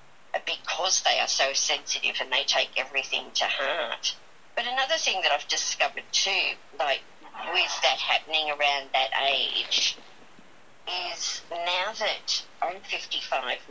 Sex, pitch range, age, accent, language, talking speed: female, 130-150 Hz, 50-69, Australian, English, 130 wpm